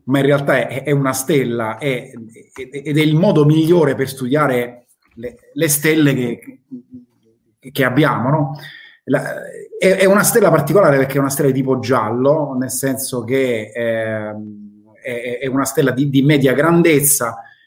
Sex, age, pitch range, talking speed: male, 30-49, 125-150 Hz, 165 wpm